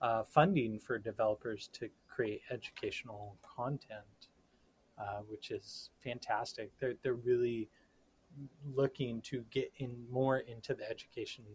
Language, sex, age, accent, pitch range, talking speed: English, male, 30-49, American, 110-135 Hz, 120 wpm